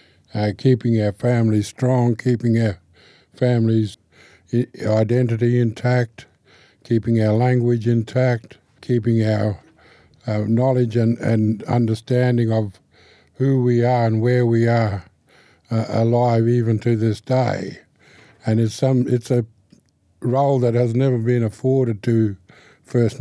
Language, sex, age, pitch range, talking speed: English, male, 60-79, 110-125 Hz, 120 wpm